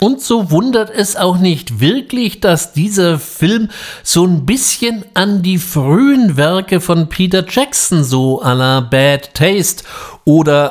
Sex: male